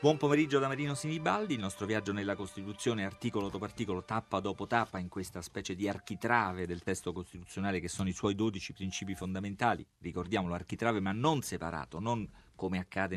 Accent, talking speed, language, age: native, 180 wpm, Italian, 40-59